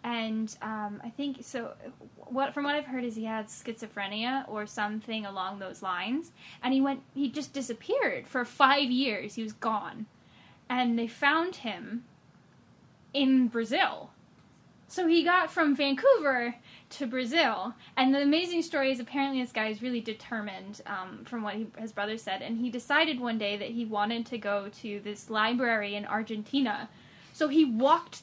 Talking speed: 170 wpm